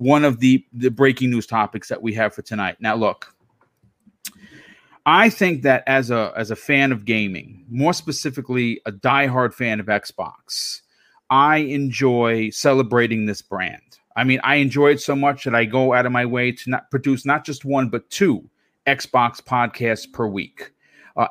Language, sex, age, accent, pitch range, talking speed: English, male, 40-59, American, 120-150 Hz, 175 wpm